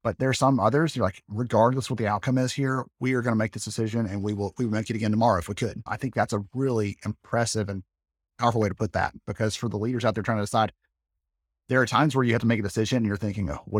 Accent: American